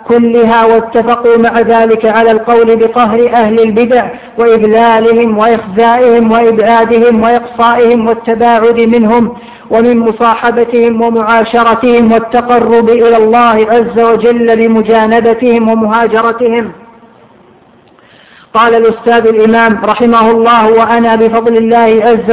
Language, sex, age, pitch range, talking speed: Arabic, female, 40-59, 225-235 Hz, 90 wpm